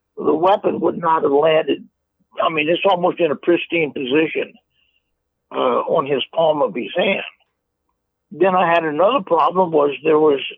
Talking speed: 165 wpm